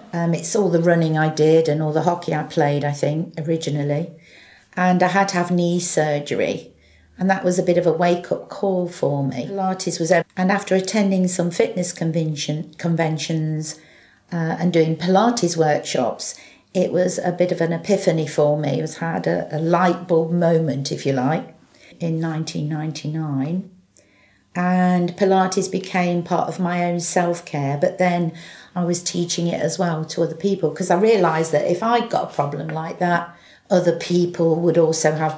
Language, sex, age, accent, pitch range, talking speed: English, female, 50-69, British, 160-185 Hz, 180 wpm